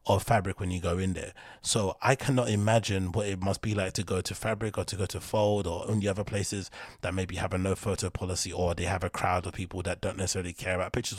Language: English